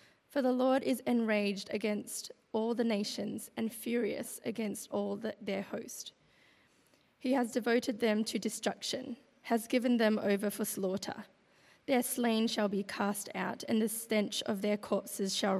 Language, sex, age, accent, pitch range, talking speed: English, female, 20-39, Australian, 205-245 Hz, 155 wpm